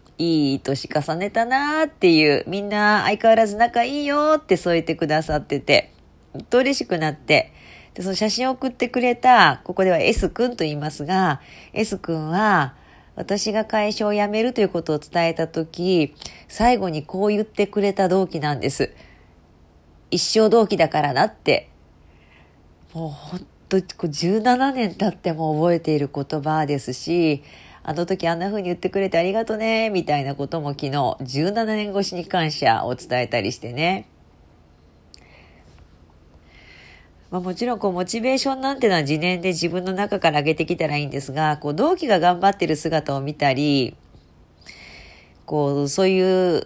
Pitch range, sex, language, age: 140-200 Hz, female, Japanese, 40-59